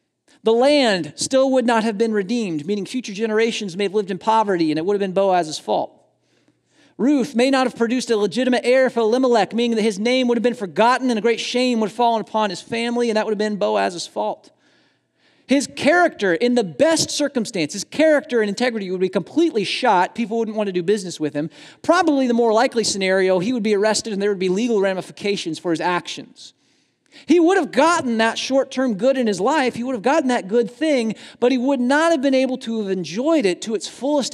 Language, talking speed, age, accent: English, 225 wpm, 40-59, American